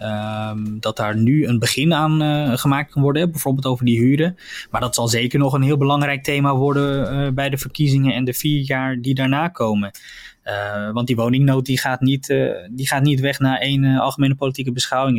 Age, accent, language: 20-39, Dutch, Dutch